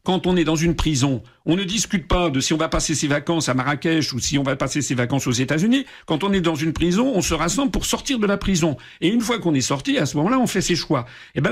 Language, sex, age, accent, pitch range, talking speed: French, male, 50-69, French, 155-200 Hz, 300 wpm